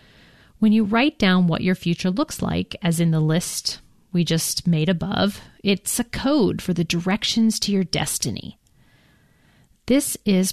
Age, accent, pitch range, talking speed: 40-59, American, 165-210 Hz, 160 wpm